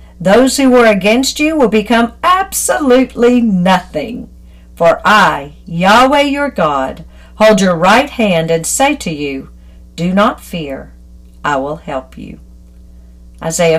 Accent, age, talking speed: American, 50-69, 130 wpm